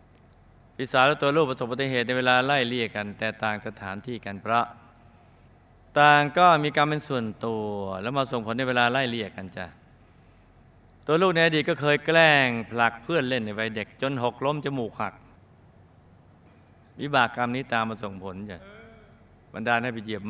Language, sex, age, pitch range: Thai, male, 20-39, 105-125 Hz